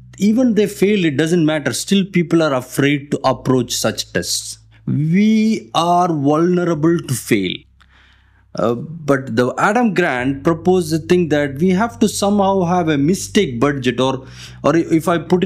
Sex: male